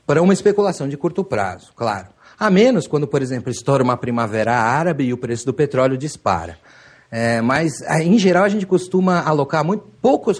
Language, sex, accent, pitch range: Portuguese, male, Brazilian, 130-175 Hz